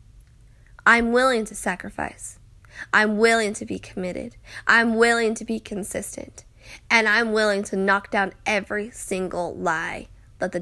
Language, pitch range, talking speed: English, 200-260 Hz, 140 wpm